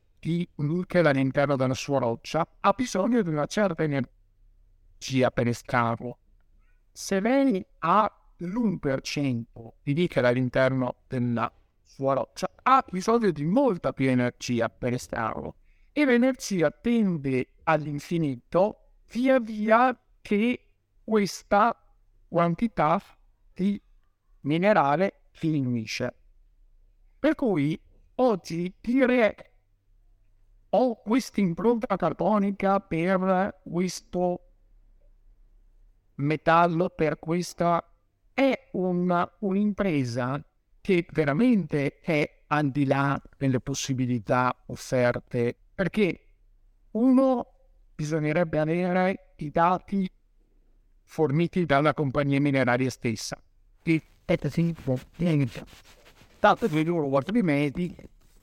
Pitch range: 120-185 Hz